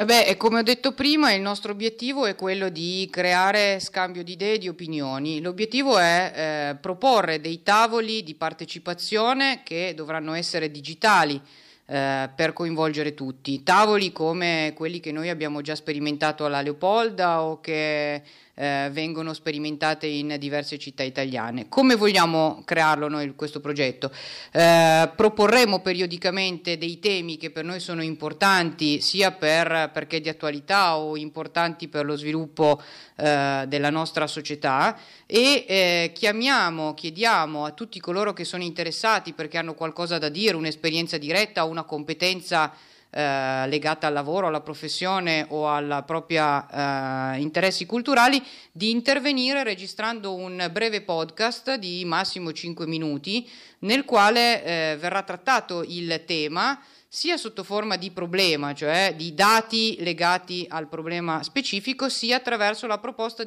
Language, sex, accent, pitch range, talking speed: Italian, female, native, 155-205 Hz, 140 wpm